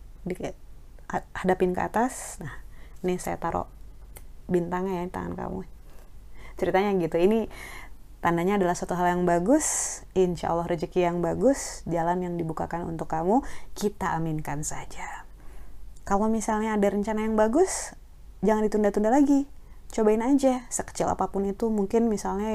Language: Indonesian